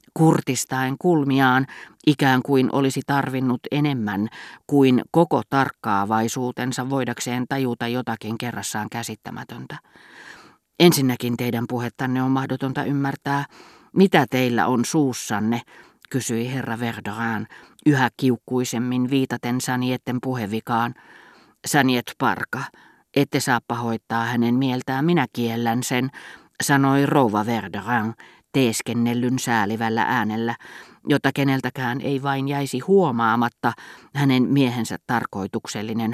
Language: Finnish